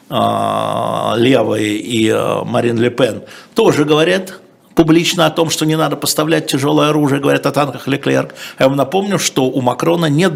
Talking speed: 150 wpm